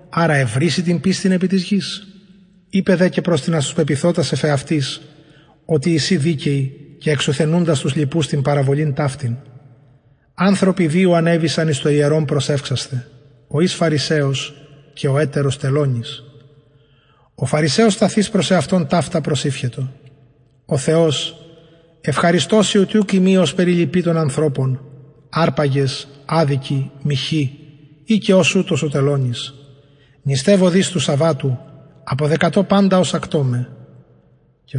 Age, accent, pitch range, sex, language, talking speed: 30-49, Greek, 140-175 Hz, male, English, 120 wpm